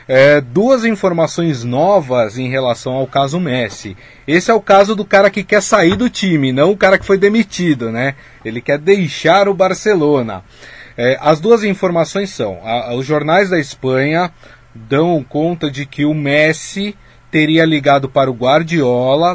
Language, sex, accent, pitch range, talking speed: Portuguese, male, Brazilian, 135-190 Hz, 155 wpm